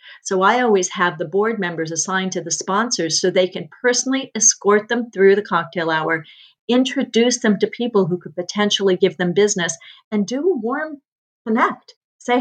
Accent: American